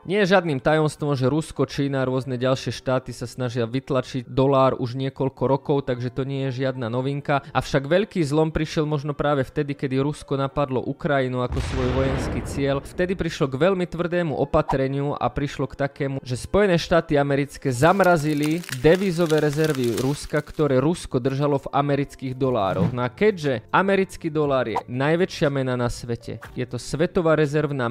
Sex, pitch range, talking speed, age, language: male, 130-155 Hz, 160 wpm, 20-39, Czech